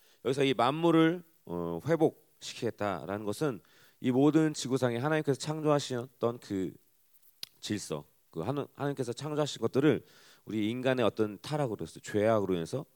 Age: 40-59